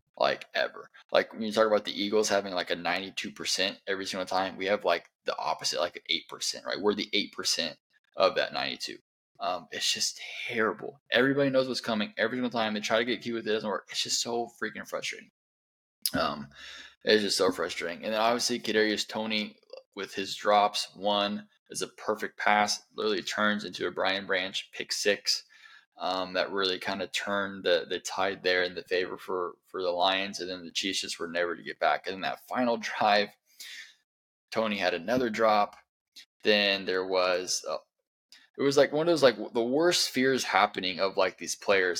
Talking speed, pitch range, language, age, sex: 200 wpm, 100-115 Hz, English, 20-39, male